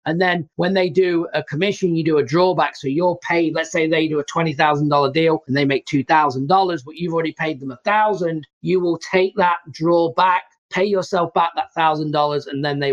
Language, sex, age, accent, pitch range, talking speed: English, male, 40-59, British, 135-170 Hz, 215 wpm